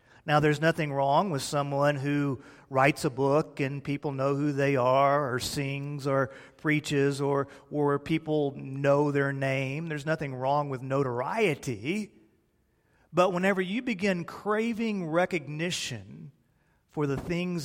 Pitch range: 135-175 Hz